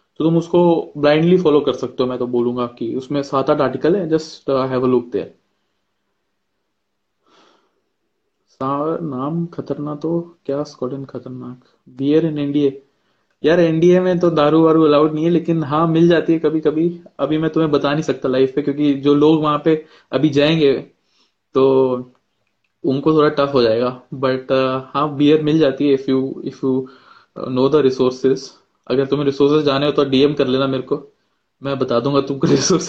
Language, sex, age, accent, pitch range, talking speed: Hindi, male, 20-39, native, 130-160 Hz, 160 wpm